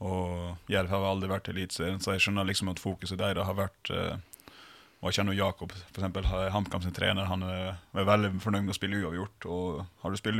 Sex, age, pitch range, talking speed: male, 20-39, 95-105 Hz, 215 wpm